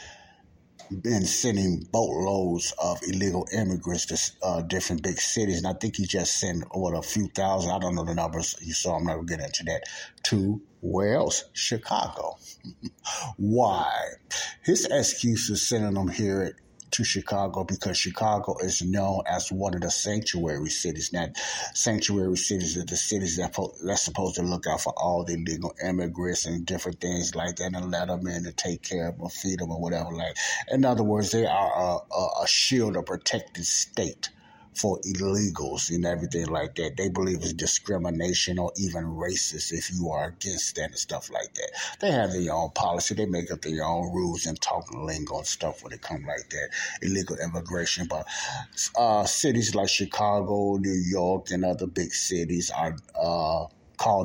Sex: male